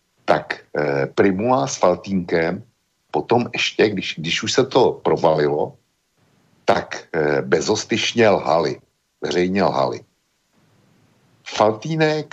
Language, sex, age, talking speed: Slovak, male, 60-79, 95 wpm